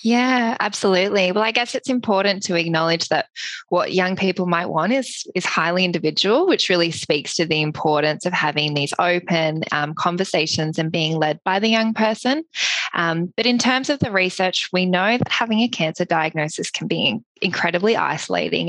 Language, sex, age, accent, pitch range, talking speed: English, female, 20-39, Australian, 170-215 Hz, 185 wpm